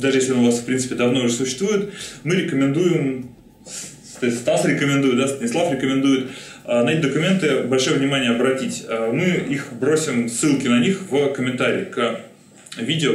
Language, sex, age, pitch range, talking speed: Russian, male, 20-39, 125-160 Hz, 150 wpm